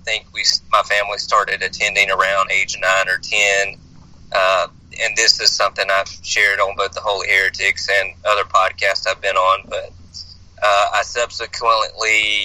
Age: 30-49